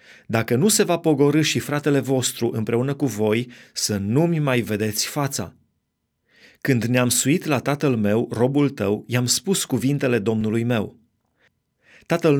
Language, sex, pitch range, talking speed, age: Romanian, male, 115-145 Hz, 140 wpm, 30-49